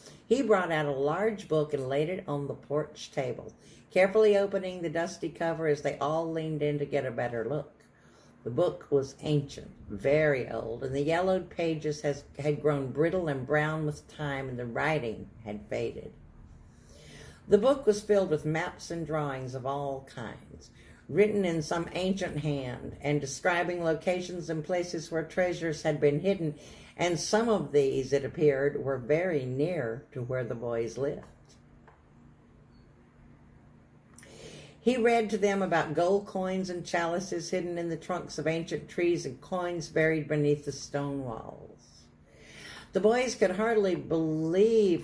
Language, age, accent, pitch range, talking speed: English, 60-79, American, 140-180 Hz, 155 wpm